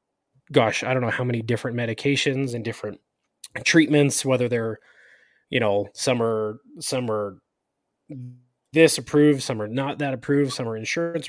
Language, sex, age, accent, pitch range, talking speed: English, male, 20-39, American, 115-140 Hz, 155 wpm